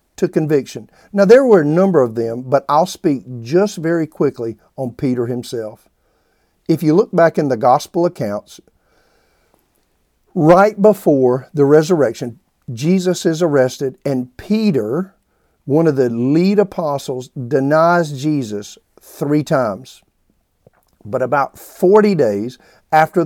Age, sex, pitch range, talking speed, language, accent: 50-69, male, 135-190 Hz, 125 wpm, English, American